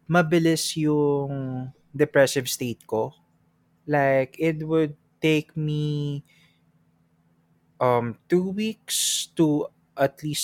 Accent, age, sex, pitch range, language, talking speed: native, 20-39, male, 125-170 Hz, Filipino, 90 wpm